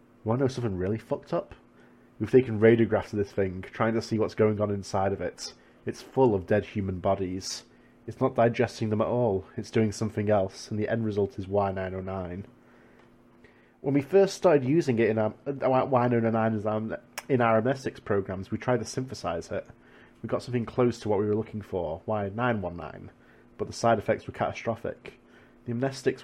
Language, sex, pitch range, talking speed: English, male, 100-120 Hz, 185 wpm